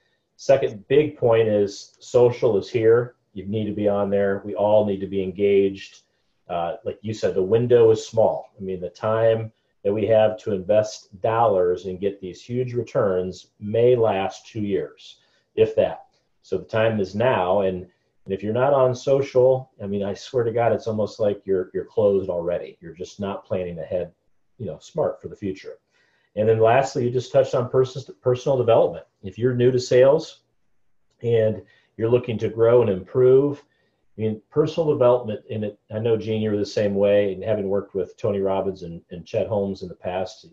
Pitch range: 100-145 Hz